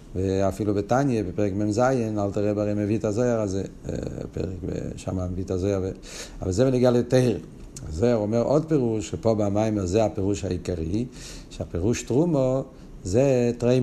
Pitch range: 100-125 Hz